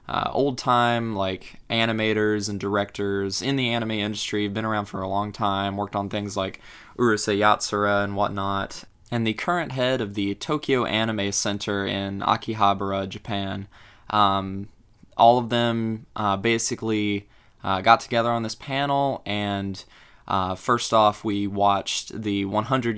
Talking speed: 145 wpm